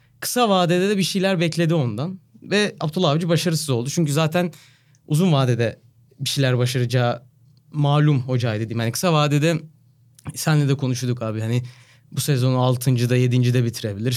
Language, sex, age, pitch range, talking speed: Turkish, male, 30-49, 125-165 Hz, 150 wpm